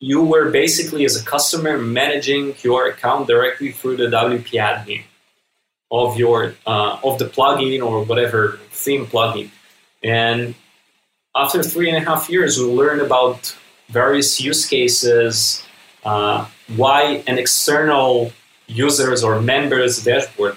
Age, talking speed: 20-39, 130 wpm